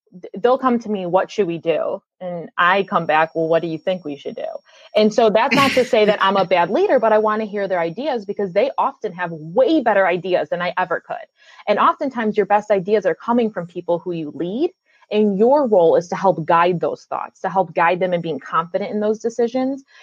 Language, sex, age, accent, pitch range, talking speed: English, female, 20-39, American, 180-235 Hz, 240 wpm